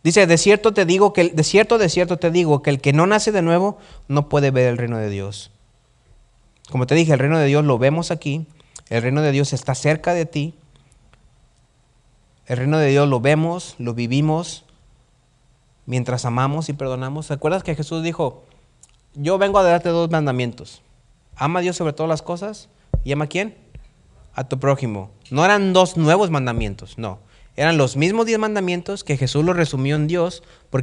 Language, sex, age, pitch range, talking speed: Spanish, male, 30-49, 130-175 Hz, 195 wpm